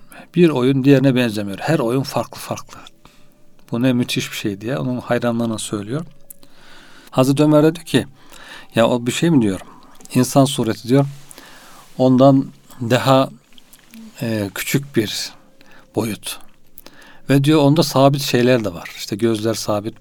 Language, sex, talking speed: Turkish, male, 140 wpm